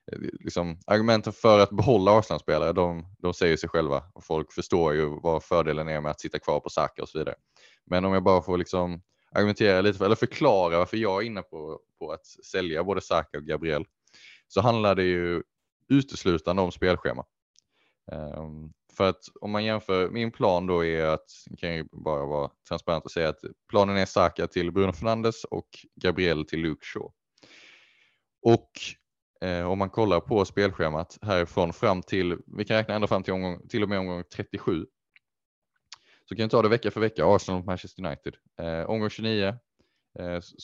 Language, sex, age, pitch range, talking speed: Swedish, male, 20-39, 85-100 Hz, 180 wpm